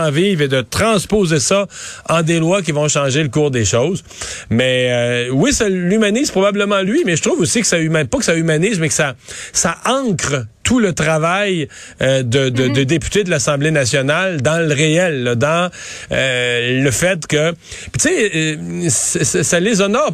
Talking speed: 190 wpm